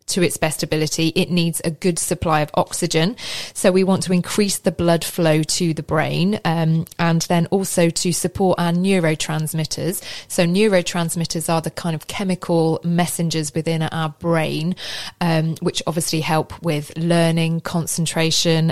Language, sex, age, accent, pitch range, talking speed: English, female, 20-39, British, 160-180 Hz, 155 wpm